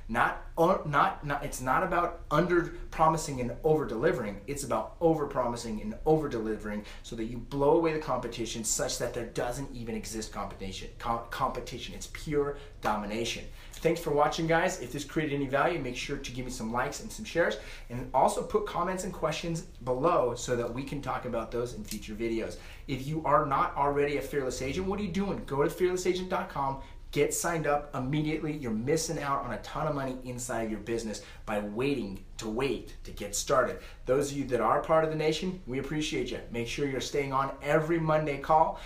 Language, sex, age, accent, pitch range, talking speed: English, male, 30-49, American, 120-160 Hz, 195 wpm